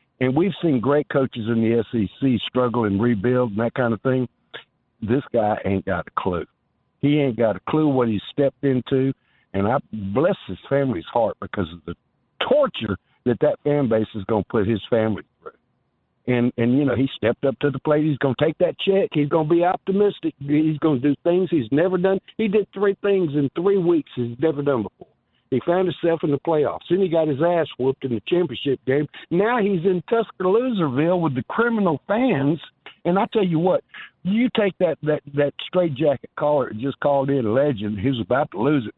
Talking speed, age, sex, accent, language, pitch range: 215 wpm, 60-79, male, American, English, 125-175 Hz